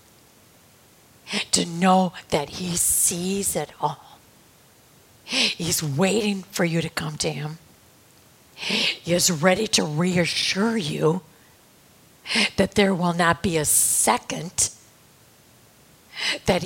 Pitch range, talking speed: 160-190 Hz, 105 wpm